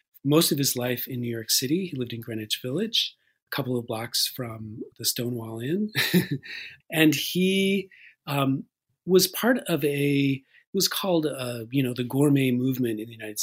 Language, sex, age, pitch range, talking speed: English, male, 40-59, 120-155 Hz, 180 wpm